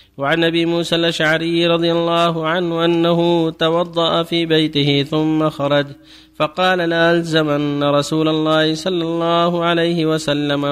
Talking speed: 125 wpm